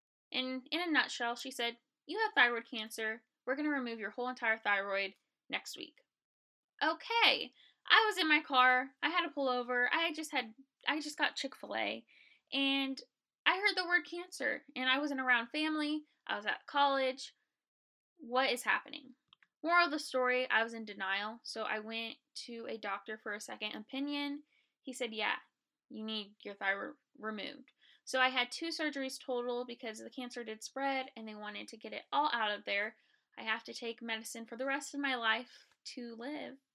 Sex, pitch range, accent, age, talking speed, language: female, 220-285 Hz, American, 10-29, 190 wpm, English